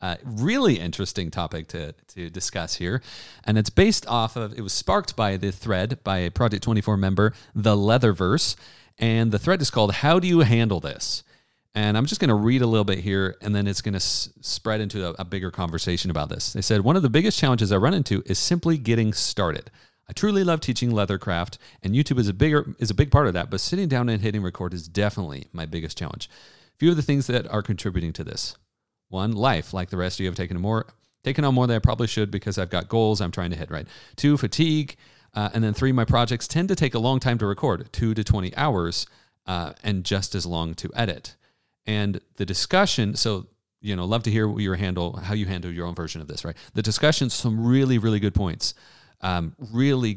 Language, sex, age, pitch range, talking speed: English, male, 40-59, 95-120 Hz, 230 wpm